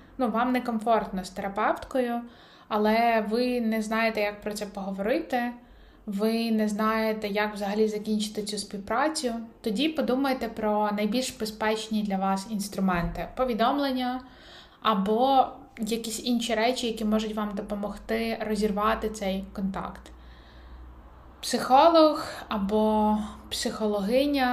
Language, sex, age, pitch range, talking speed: Ukrainian, female, 20-39, 205-235 Hz, 110 wpm